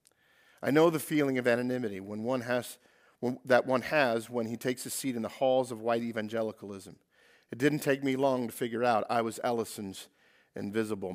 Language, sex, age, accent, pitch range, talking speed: English, male, 50-69, American, 130-170 Hz, 195 wpm